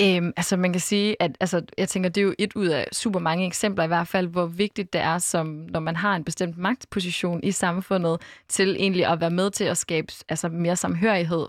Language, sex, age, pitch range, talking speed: Danish, female, 20-39, 175-205 Hz, 235 wpm